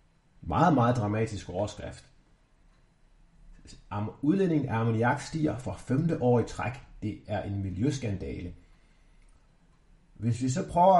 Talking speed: 115 wpm